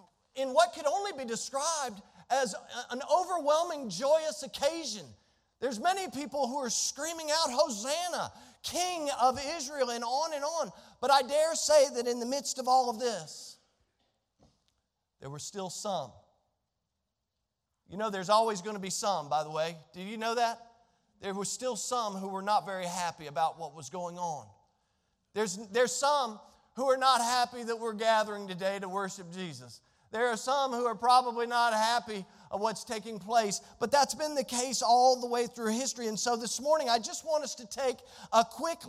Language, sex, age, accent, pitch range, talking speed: English, male, 40-59, American, 190-265 Hz, 185 wpm